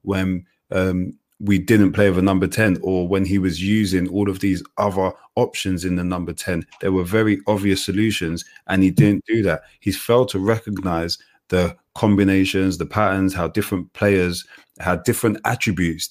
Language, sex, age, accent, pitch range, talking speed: English, male, 30-49, British, 90-100 Hz, 170 wpm